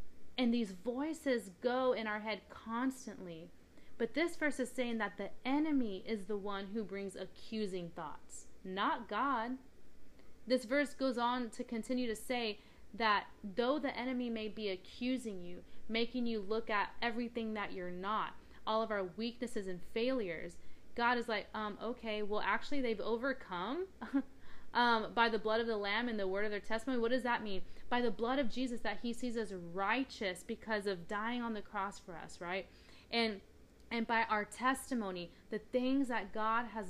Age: 20-39